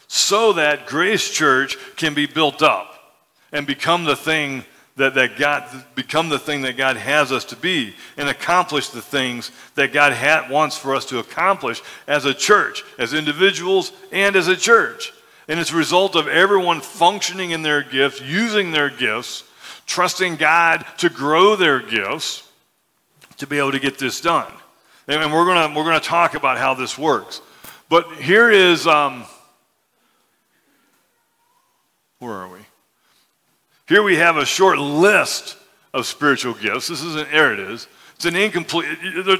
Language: English